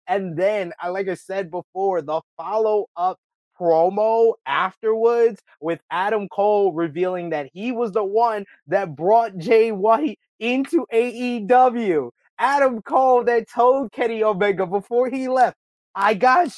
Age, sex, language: 20-39, male, English